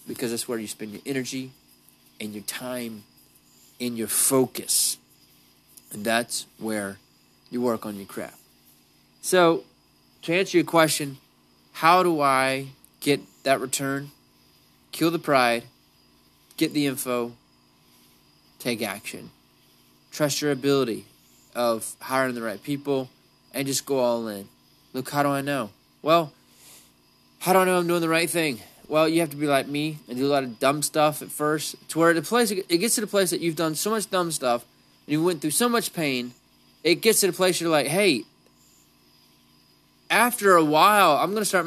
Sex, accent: male, American